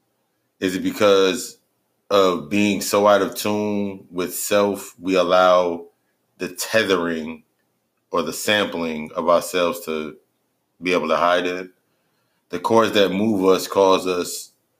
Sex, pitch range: male, 85-100 Hz